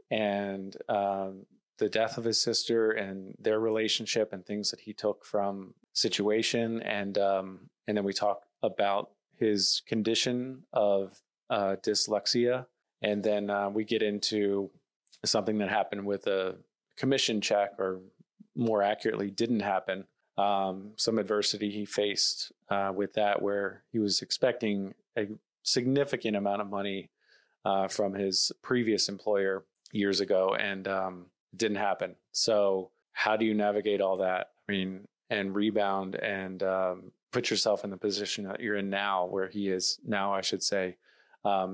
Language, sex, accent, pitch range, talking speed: English, male, American, 95-110 Hz, 150 wpm